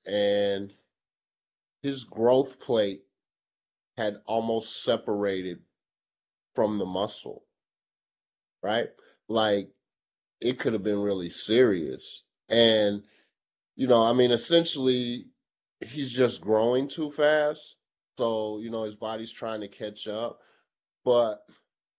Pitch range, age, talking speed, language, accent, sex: 110-155 Hz, 30-49, 105 wpm, English, American, male